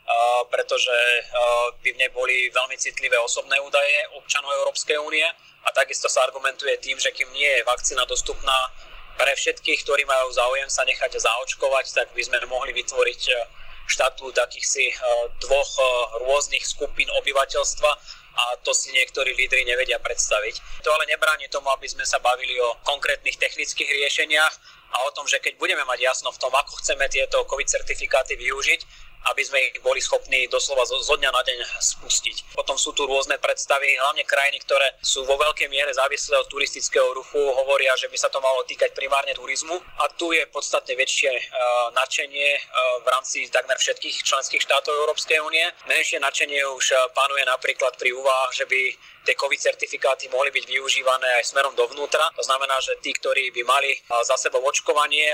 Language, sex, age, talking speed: Slovak, male, 30-49, 165 wpm